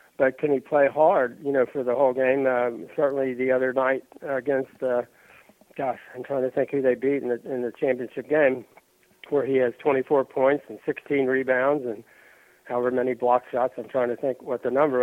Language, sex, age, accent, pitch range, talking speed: English, male, 60-79, American, 125-140 Hz, 205 wpm